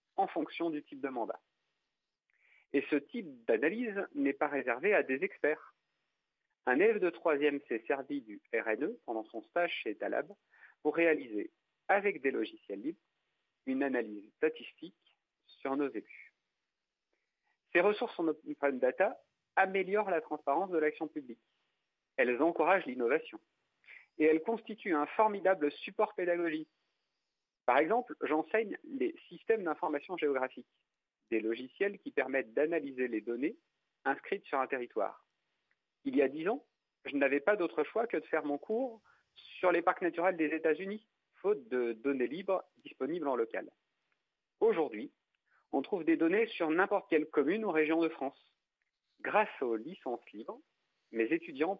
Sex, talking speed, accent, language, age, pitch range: male, 145 wpm, French, French, 50-69, 140-230 Hz